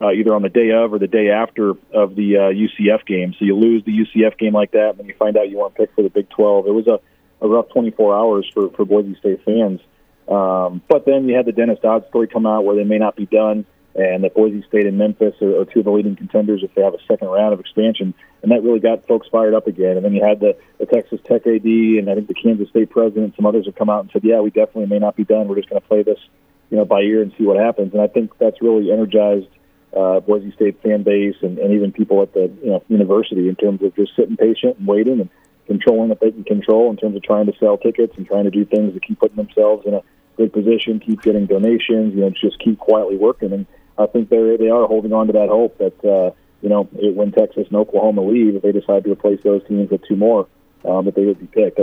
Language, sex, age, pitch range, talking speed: English, male, 40-59, 100-110 Hz, 275 wpm